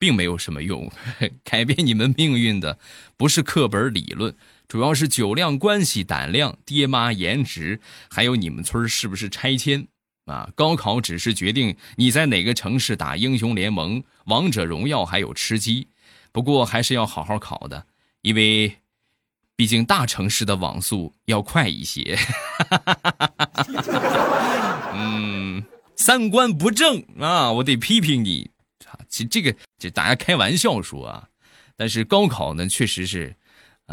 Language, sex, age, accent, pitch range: Chinese, male, 20-39, native, 100-130 Hz